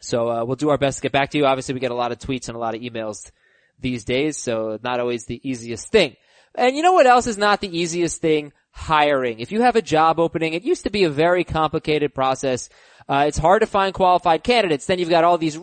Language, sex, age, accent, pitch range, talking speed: English, male, 20-39, American, 150-205 Hz, 260 wpm